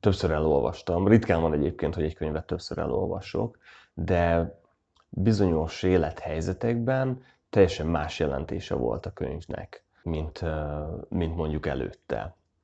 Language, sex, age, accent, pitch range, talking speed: English, male, 30-49, Finnish, 80-95 Hz, 110 wpm